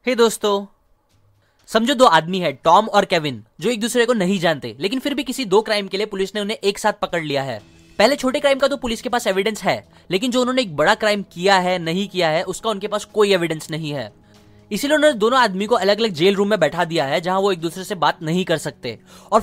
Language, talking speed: Hindi, 160 wpm